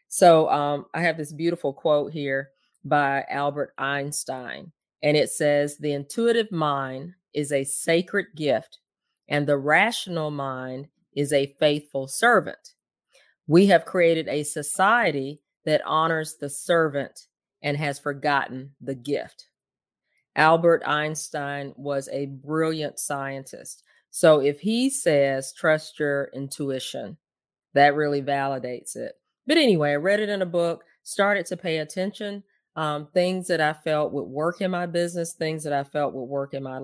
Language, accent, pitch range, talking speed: English, American, 145-175 Hz, 145 wpm